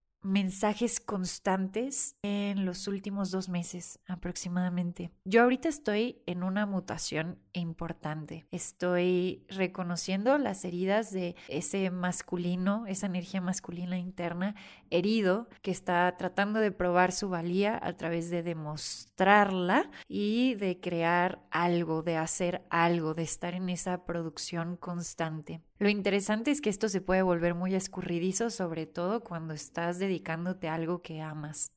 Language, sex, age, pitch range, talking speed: Spanish, female, 20-39, 175-200 Hz, 130 wpm